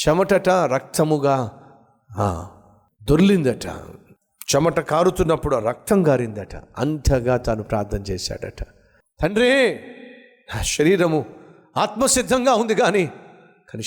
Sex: male